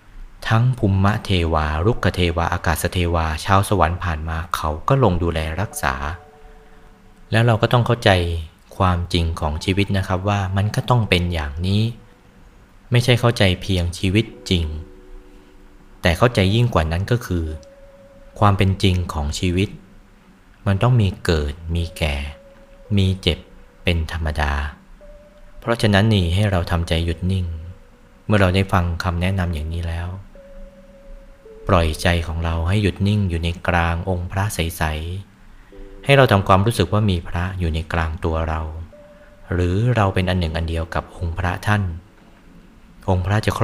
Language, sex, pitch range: Thai, male, 85-100 Hz